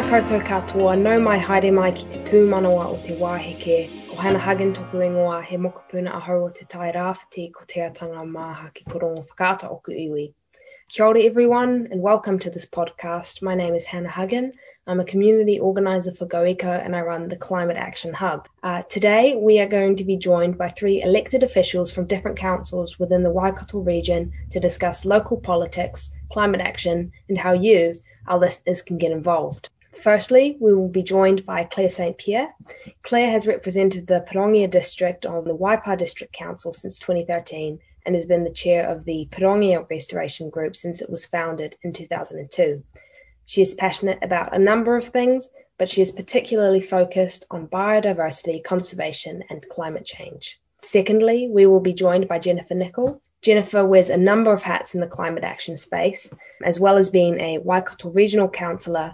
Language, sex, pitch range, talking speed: English, female, 175-195 Hz, 145 wpm